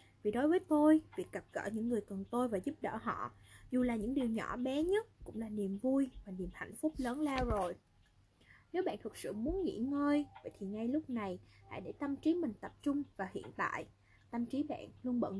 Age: 10-29